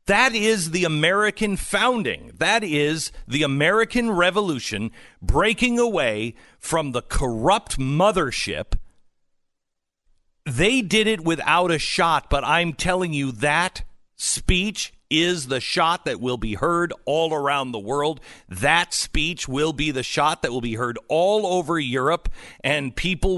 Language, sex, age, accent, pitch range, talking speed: English, male, 50-69, American, 120-170 Hz, 140 wpm